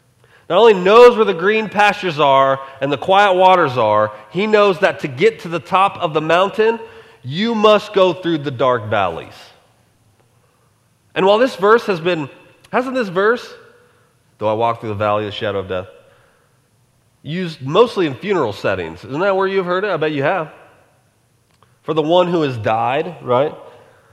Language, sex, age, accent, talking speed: English, male, 30-49, American, 180 wpm